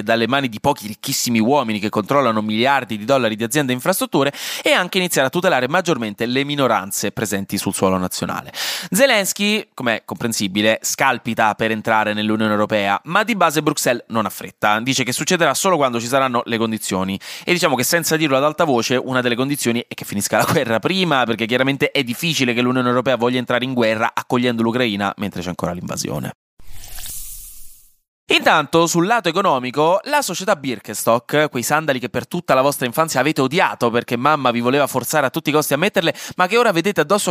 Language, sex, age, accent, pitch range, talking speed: Italian, male, 20-39, native, 115-165 Hz, 190 wpm